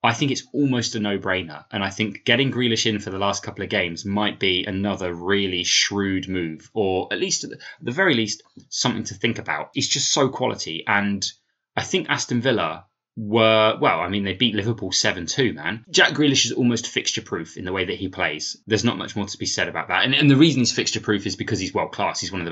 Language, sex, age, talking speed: English, male, 20-39, 240 wpm